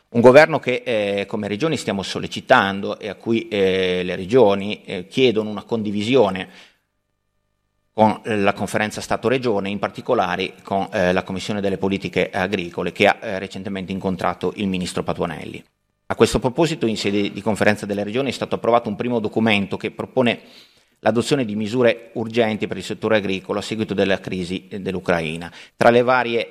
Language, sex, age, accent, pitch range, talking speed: Italian, male, 30-49, native, 95-110 Hz, 165 wpm